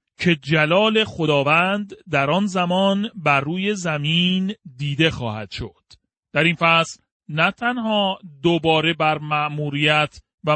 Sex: male